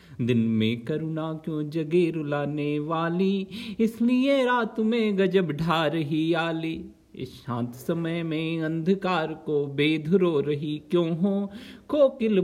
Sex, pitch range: male, 160-205 Hz